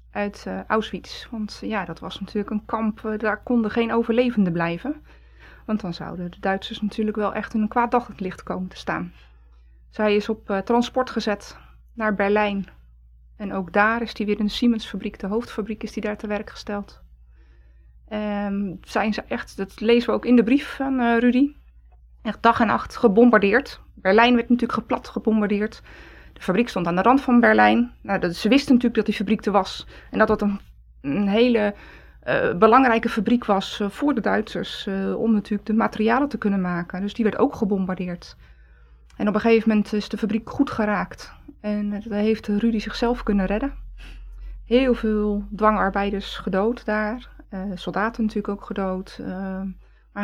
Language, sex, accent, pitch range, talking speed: Dutch, female, Dutch, 195-230 Hz, 180 wpm